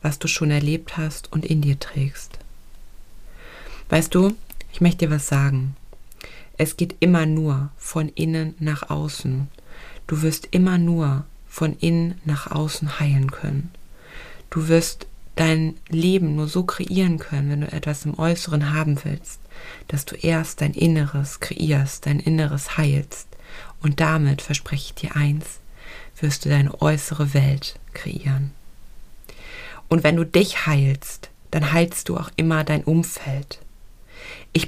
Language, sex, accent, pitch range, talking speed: German, female, German, 145-165 Hz, 145 wpm